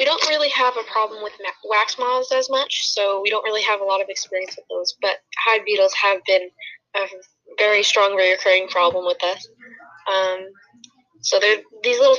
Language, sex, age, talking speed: English, female, 10-29, 190 wpm